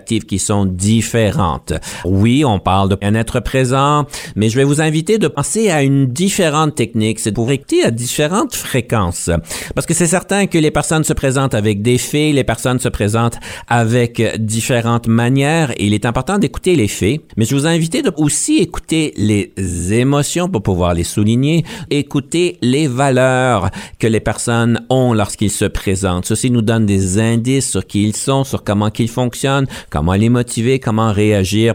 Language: French